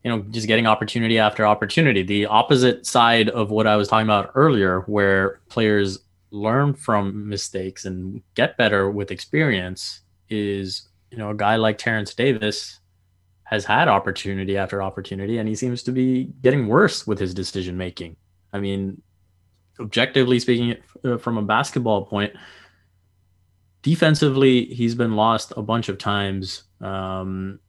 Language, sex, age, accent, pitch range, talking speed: English, male, 20-39, American, 95-110 Hz, 145 wpm